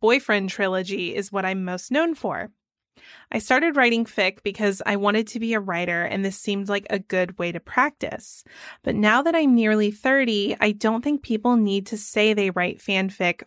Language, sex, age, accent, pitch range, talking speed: English, female, 20-39, American, 195-230 Hz, 195 wpm